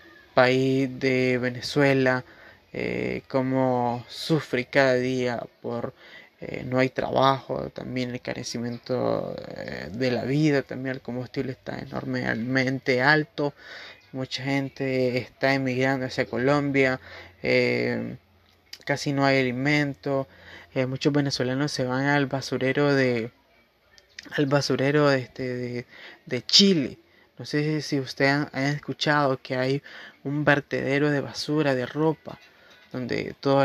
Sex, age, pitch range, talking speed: male, 20-39, 125-140 Hz, 120 wpm